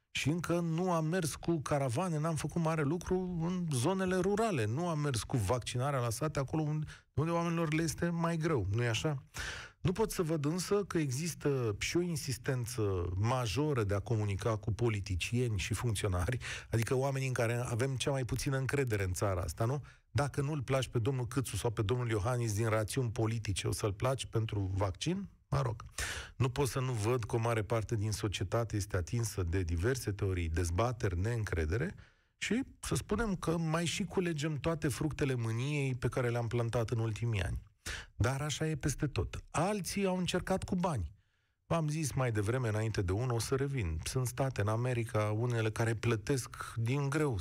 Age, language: 40-59, Romanian